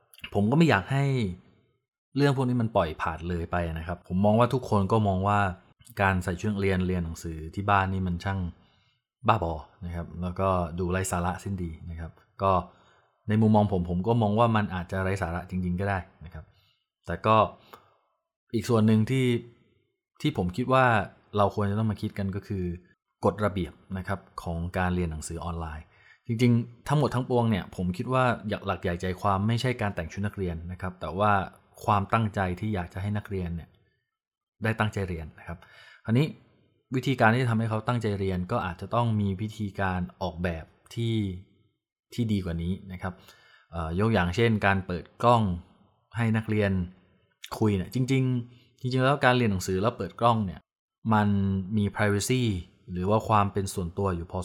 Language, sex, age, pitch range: Thai, male, 20-39, 90-110 Hz